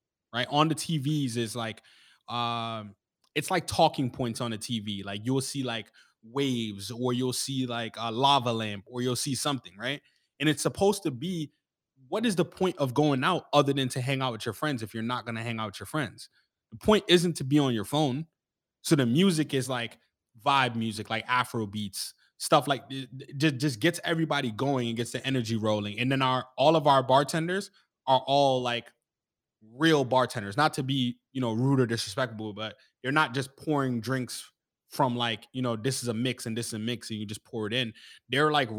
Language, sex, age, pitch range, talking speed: English, male, 20-39, 115-145 Hz, 215 wpm